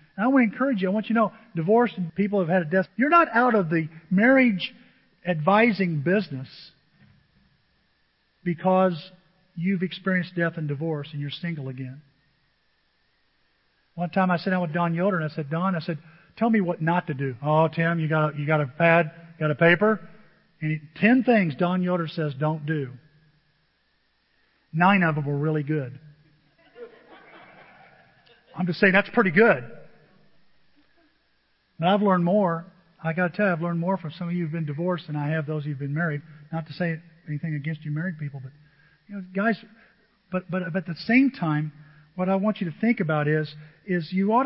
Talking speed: 195 wpm